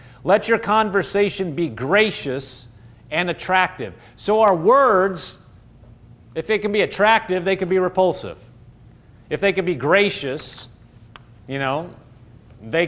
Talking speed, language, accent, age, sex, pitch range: 125 wpm, English, American, 40-59, male, 125-195 Hz